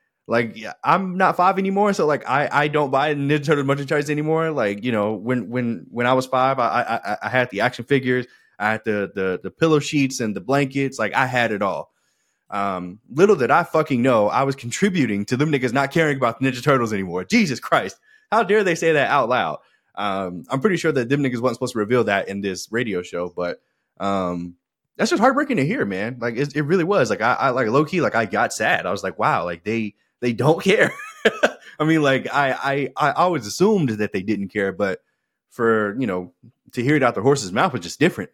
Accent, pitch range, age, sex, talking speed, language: American, 105-140 Hz, 20-39, male, 235 wpm, English